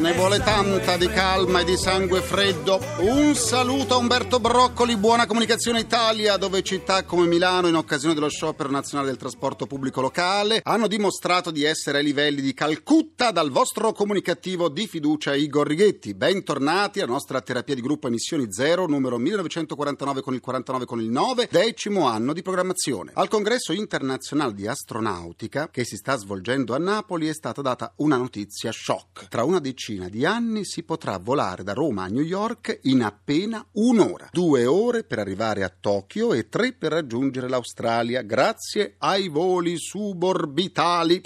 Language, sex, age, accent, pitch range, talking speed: Italian, male, 40-59, native, 130-195 Hz, 165 wpm